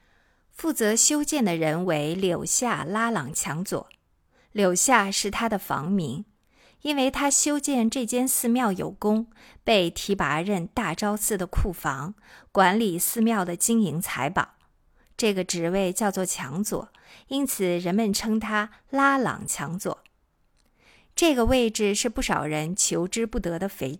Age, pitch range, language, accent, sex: 50-69, 175-235 Hz, Chinese, native, female